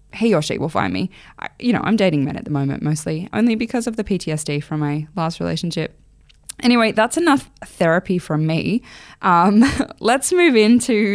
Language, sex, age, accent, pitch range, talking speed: English, female, 10-29, Australian, 160-220 Hz, 185 wpm